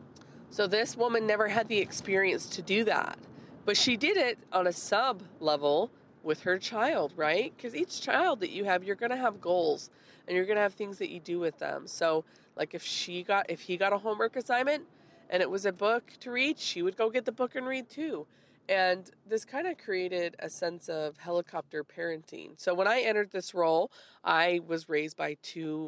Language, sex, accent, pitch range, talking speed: English, female, American, 160-220 Hz, 215 wpm